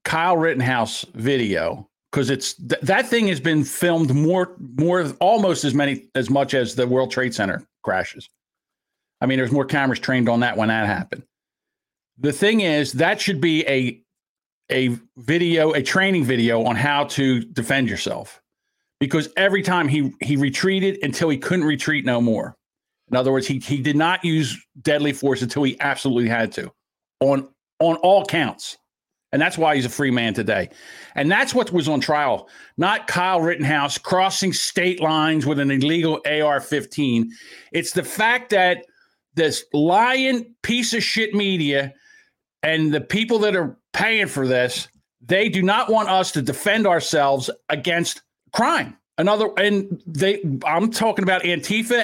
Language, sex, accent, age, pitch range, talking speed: English, male, American, 50-69, 140-190 Hz, 165 wpm